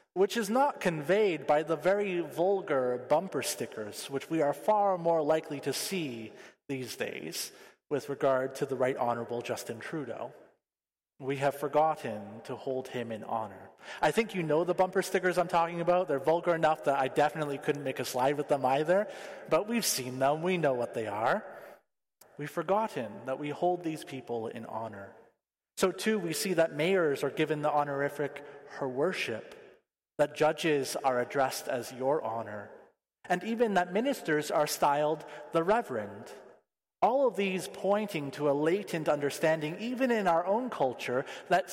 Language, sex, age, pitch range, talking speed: English, male, 30-49, 140-185 Hz, 170 wpm